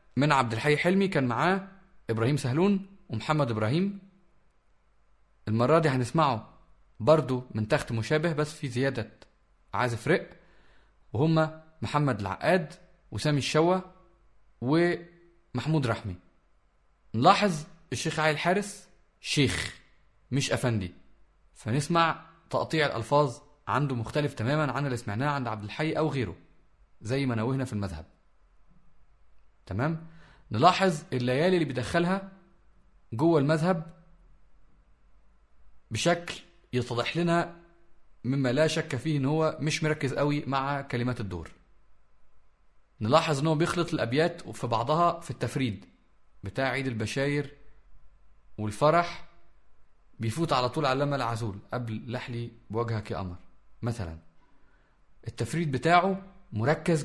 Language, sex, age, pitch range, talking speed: Arabic, male, 30-49, 115-165 Hz, 110 wpm